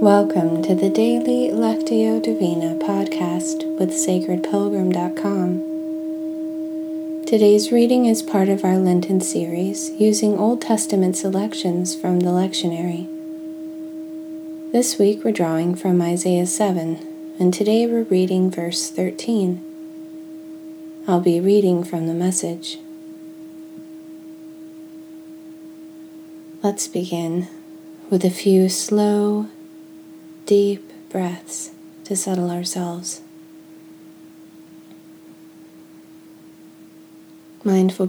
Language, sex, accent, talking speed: English, female, American, 85 wpm